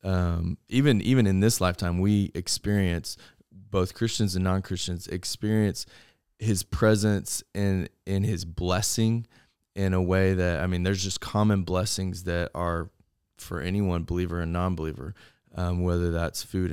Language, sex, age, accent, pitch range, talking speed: English, male, 20-39, American, 90-100 Hz, 145 wpm